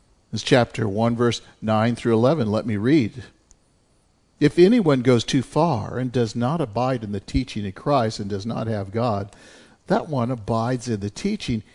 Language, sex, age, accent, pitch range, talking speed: English, male, 50-69, American, 115-155 Hz, 180 wpm